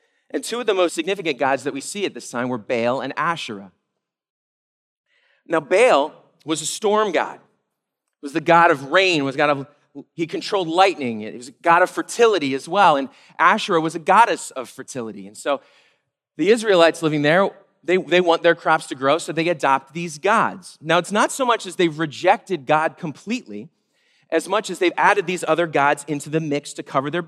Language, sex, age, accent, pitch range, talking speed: English, male, 40-59, American, 155-210 Hz, 200 wpm